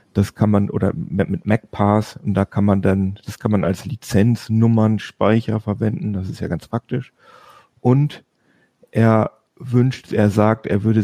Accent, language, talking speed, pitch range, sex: German, German, 160 wpm, 100-120 Hz, male